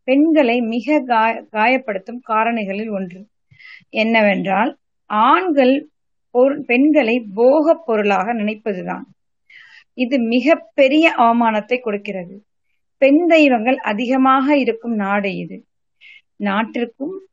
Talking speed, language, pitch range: 80 wpm, Tamil, 205-270 Hz